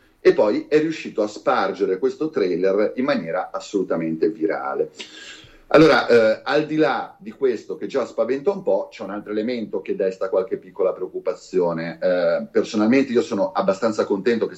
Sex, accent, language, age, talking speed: male, native, Italian, 30-49, 165 wpm